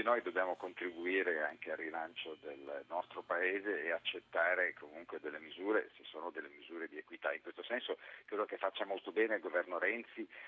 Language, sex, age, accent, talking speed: Italian, male, 50-69, native, 180 wpm